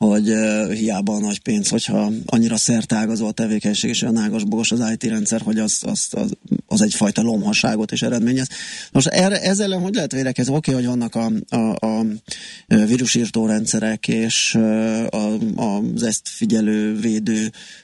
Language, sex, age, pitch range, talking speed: Hungarian, male, 20-39, 115-140 Hz, 155 wpm